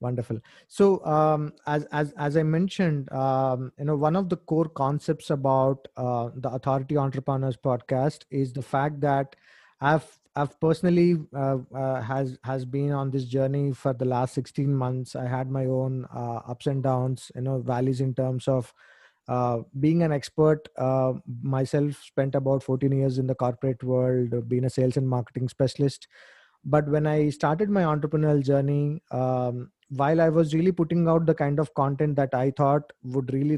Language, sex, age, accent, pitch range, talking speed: English, male, 20-39, Indian, 130-150 Hz, 180 wpm